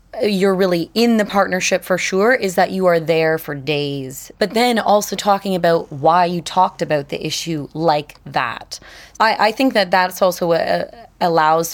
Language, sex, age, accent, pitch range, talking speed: English, female, 20-39, American, 170-220 Hz, 180 wpm